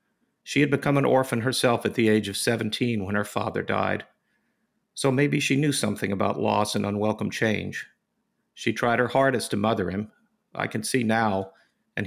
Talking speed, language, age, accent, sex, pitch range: 185 wpm, English, 50-69, American, male, 110-130 Hz